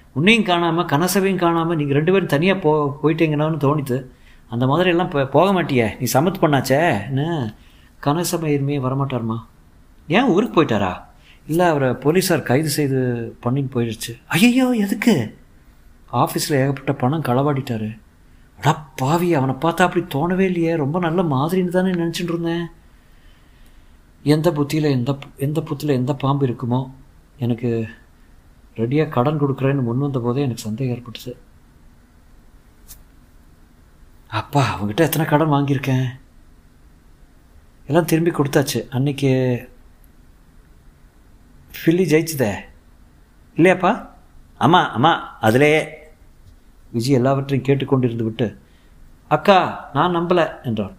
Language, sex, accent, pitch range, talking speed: Tamil, male, native, 105-160 Hz, 110 wpm